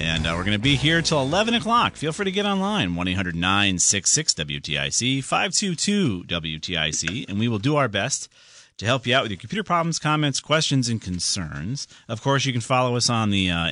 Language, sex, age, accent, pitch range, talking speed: English, male, 40-59, American, 80-130 Hz, 195 wpm